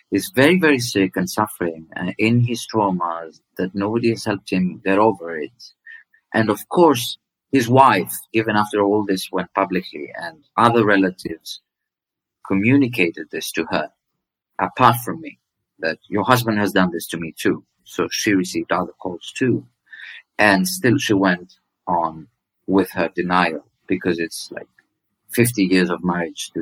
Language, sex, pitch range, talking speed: English, male, 90-115 Hz, 160 wpm